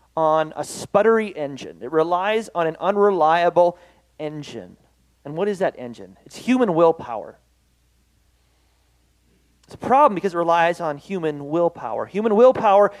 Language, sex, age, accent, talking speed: English, male, 30-49, American, 135 wpm